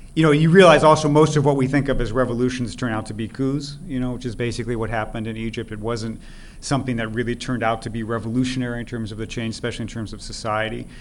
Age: 40-59